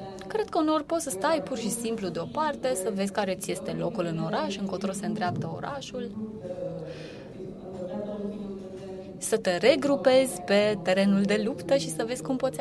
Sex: female